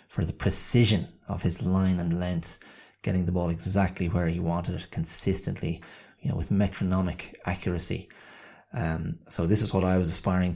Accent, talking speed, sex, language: Irish, 170 wpm, male, English